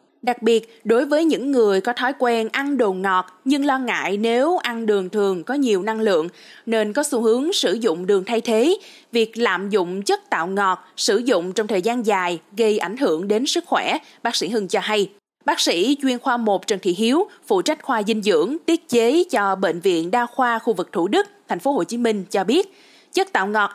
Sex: female